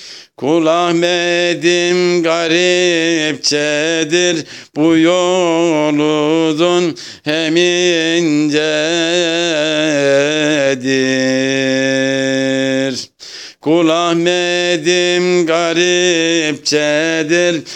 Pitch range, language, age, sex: 115-160 Hz, Turkish, 60-79, male